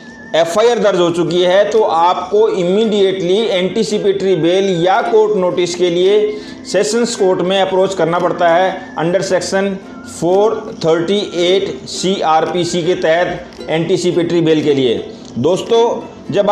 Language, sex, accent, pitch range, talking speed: Hindi, male, native, 170-200 Hz, 125 wpm